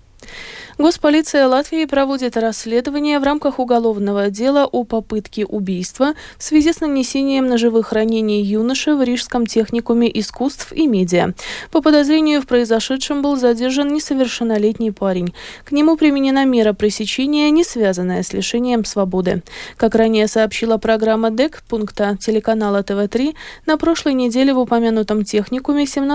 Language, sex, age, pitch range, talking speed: Russian, female, 20-39, 215-280 Hz, 130 wpm